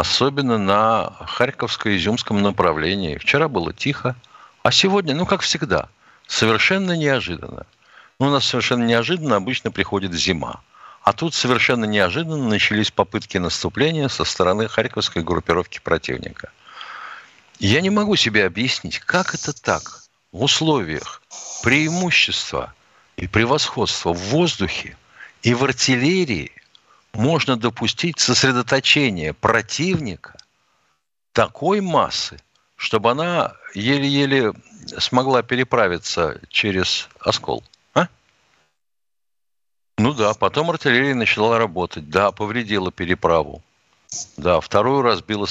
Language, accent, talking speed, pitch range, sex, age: Russian, native, 105 wpm, 100-140 Hz, male, 60-79